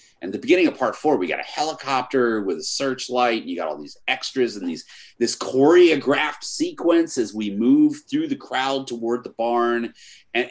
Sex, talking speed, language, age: male, 195 wpm, English, 30-49